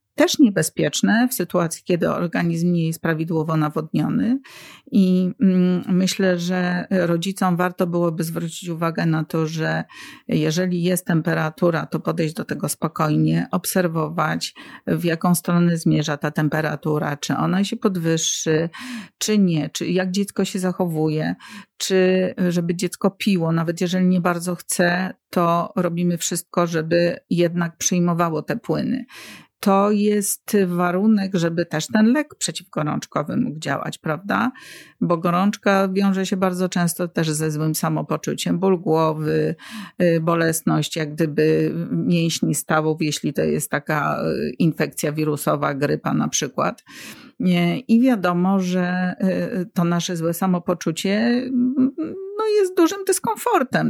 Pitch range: 165-200 Hz